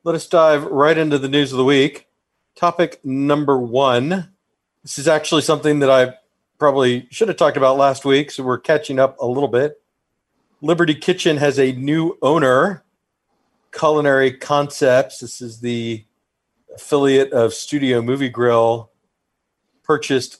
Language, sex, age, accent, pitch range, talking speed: English, male, 40-59, American, 120-150 Hz, 145 wpm